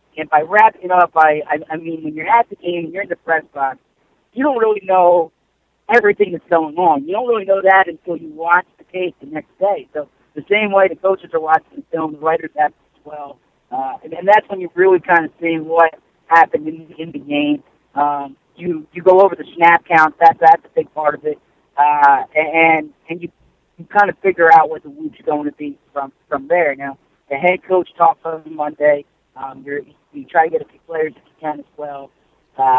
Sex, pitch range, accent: male, 155-190 Hz, American